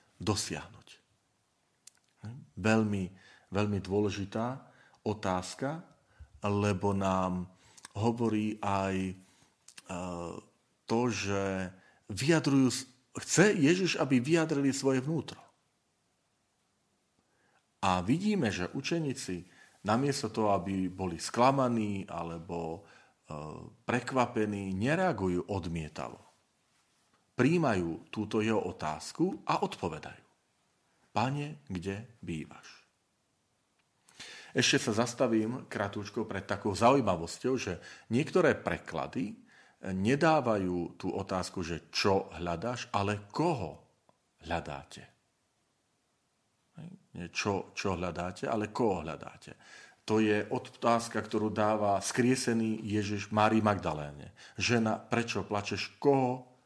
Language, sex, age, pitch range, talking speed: Slovak, male, 40-59, 95-125 Hz, 85 wpm